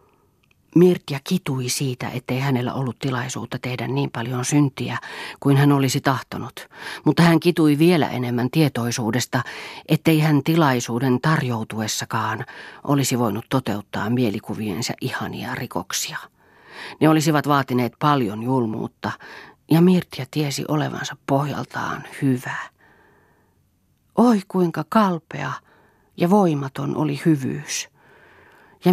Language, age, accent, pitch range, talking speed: Finnish, 40-59, native, 125-170 Hz, 105 wpm